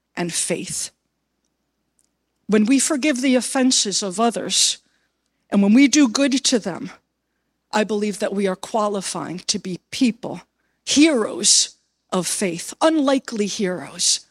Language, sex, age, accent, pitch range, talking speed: English, female, 50-69, American, 195-255 Hz, 125 wpm